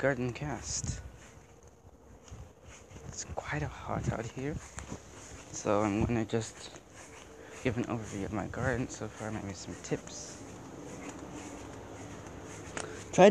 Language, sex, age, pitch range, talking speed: English, male, 20-39, 95-120 Hz, 110 wpm